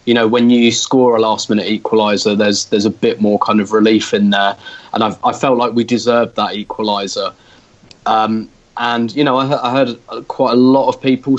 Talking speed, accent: 205 wpm, British